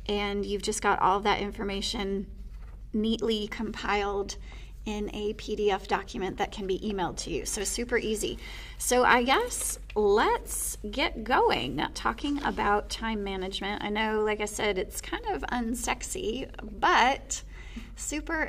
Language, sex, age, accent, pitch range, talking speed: English, female, 30-49, American, 205-245 Hz, 145 wpm